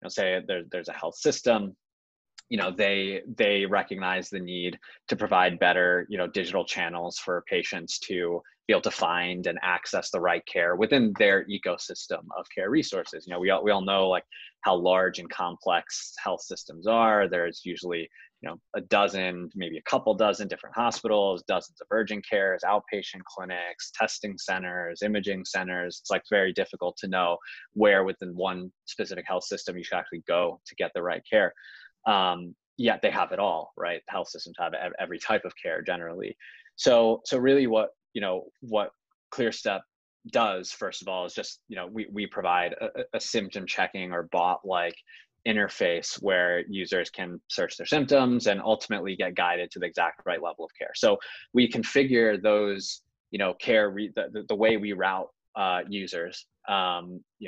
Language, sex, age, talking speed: English, male, 20-39, 180 wpm